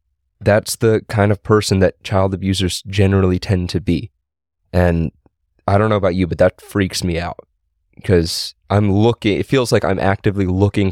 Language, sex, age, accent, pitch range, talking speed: English, male, 20-39, American, 85-100 Hz, 175 wpm